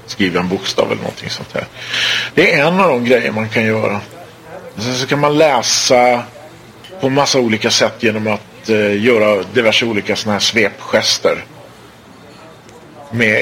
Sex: male